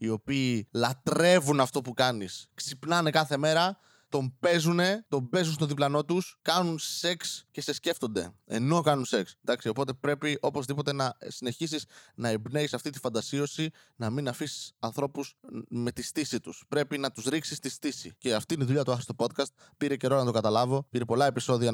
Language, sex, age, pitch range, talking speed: Greek, male, 20-39, 115-145 Hz, 185 wpm